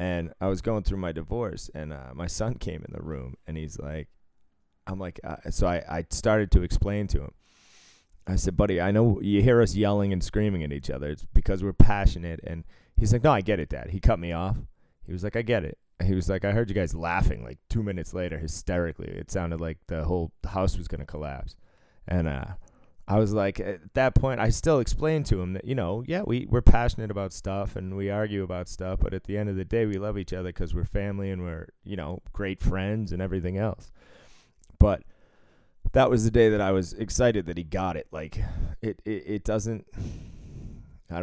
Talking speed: 225 wpm